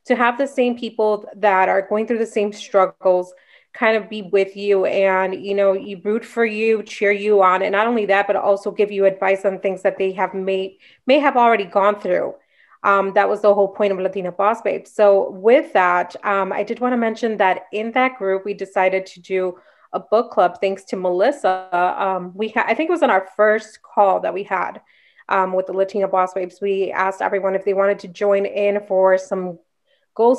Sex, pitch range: female, 190-225 Hz